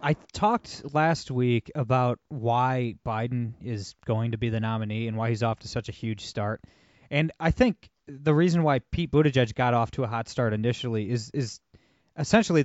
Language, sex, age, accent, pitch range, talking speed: English, male, 20-39, American, 115-150 Hz, 190 wpm